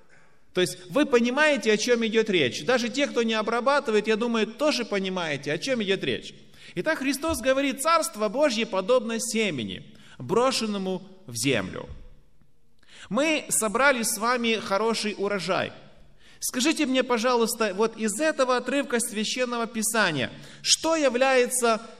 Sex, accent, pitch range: male, native, 195-255 Hz